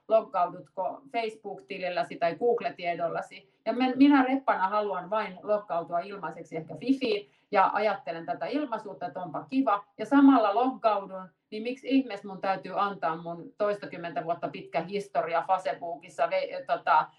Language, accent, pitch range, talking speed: Finnish, native, 165-205 Hz, 130 wpm